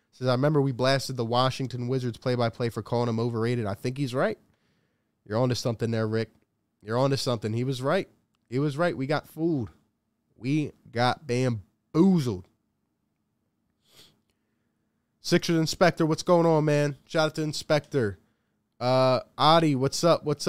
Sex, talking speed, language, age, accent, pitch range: male, 155 wpm, English, 20-39, American, 115-150 Hz